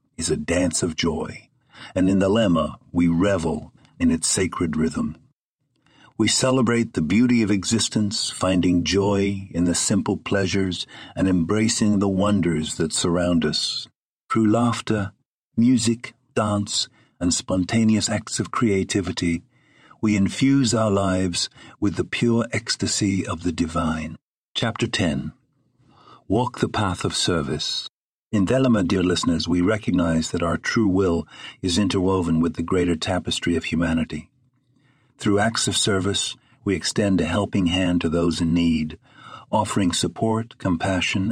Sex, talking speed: male, 140 wpm